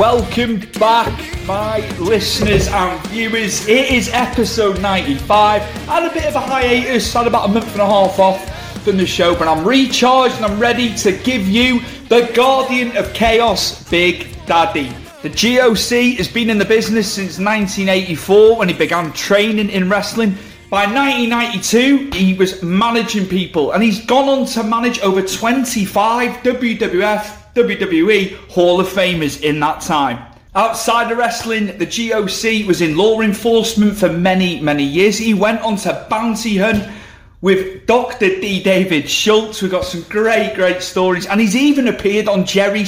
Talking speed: 160 wpm